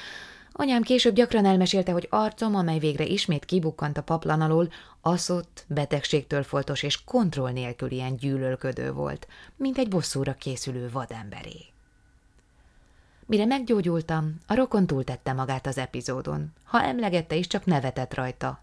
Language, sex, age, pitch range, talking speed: Hungarian, female, 20-39, 130-175 Hz, 130 wpm